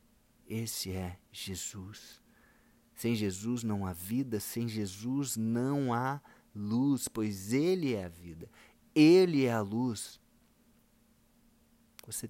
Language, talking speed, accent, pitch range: Portuguese, 110 wpm, Brazilian, 110-145 Hz